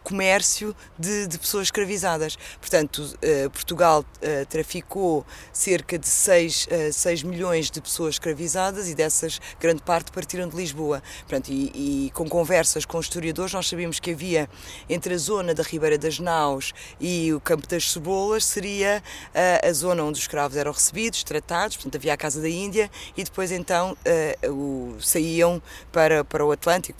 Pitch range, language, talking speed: 150-195 Hz, Portuguese, 160 wpm